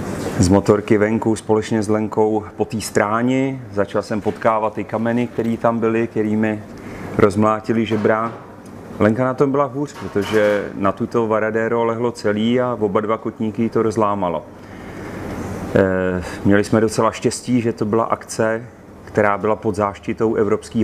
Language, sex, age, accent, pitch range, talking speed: Czech, male, 30-49, native, 105-115 Hz, 145 wpm